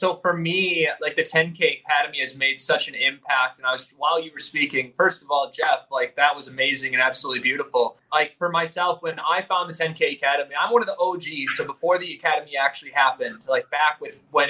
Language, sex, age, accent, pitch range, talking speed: English, male, 20-39, American, 160-200 Hz, 220 wpm